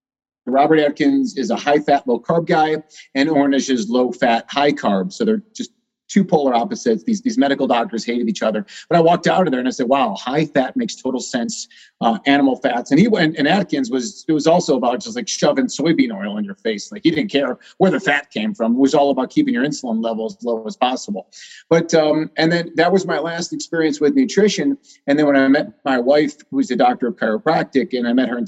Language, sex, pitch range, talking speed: English, male, 115-185 Hz, 240 wpm